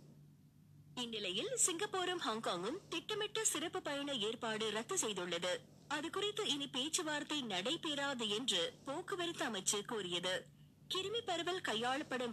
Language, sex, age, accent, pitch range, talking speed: Tamil, female, 20-39, native, 205-310 Hz, 95 wpm